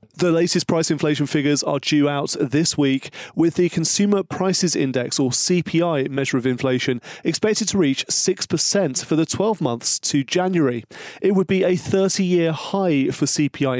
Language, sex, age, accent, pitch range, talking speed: English, male, 30-49, British, 135-175 Hz, 170 wpm